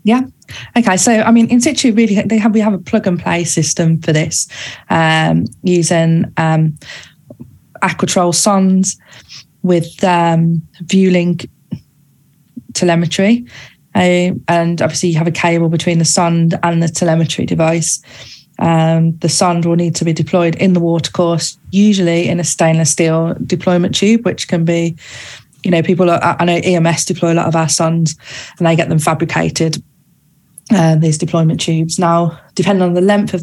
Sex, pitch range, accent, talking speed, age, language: female, 160-185 Hz, British, 165 wpm, 20-39, English